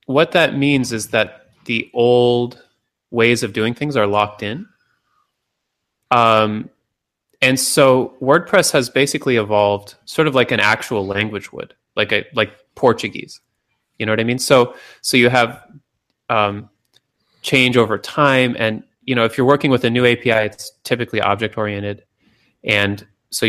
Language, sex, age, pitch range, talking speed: English, male, 30-49, 105-125 Hz, 155 wpm